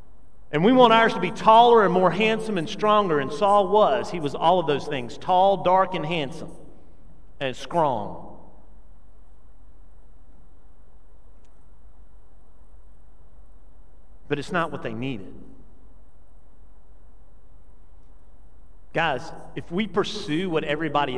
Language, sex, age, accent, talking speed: English, male, 40-59, American, 110 wpm